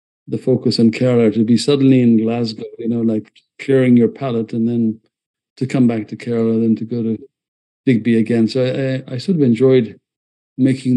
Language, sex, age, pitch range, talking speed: English, male, 50-69, 115-140 Hz, 195 wpm